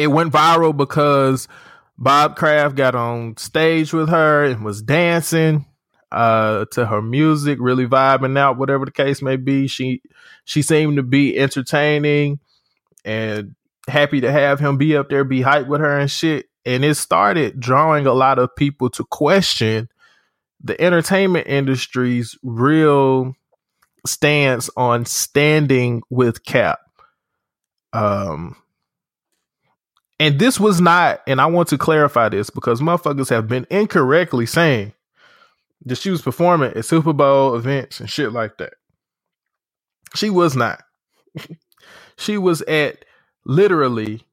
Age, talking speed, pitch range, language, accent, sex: 20-39, 135 wpm, 130-160 Hz, English, American, male